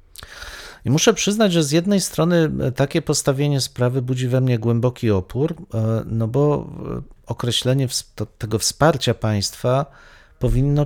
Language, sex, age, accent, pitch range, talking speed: Polish, male, 40-59, native, 110-135 Hz, 120 wpm